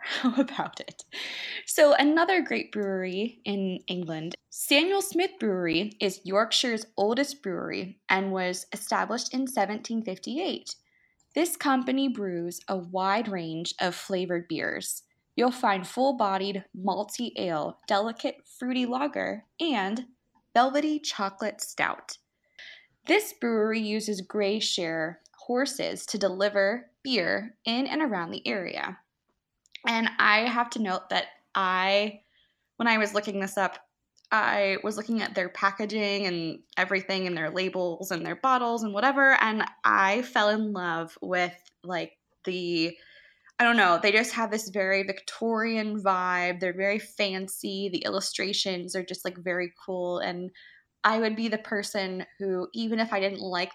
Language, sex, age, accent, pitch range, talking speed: English, female, 20-39, American, 185-230 Hz, 140 wpm